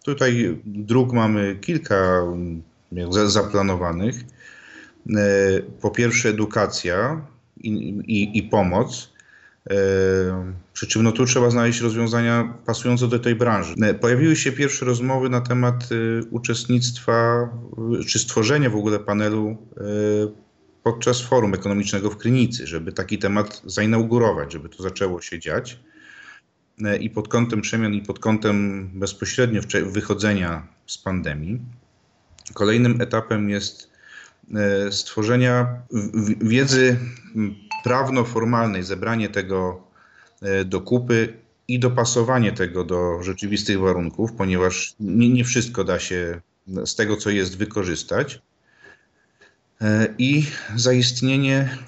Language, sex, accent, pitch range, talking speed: Polish, male, native, 100-120 Hz, 100 wpm